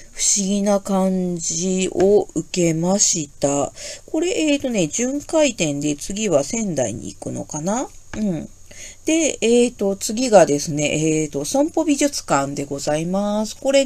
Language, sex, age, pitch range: Japanese, female, 40-59, 145-240 Hz